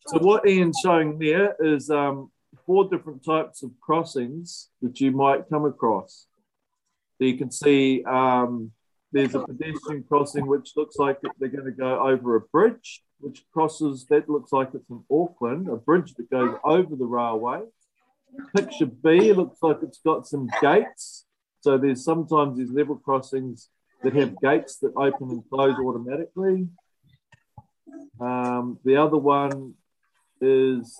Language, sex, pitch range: English, male, 125-155 Hz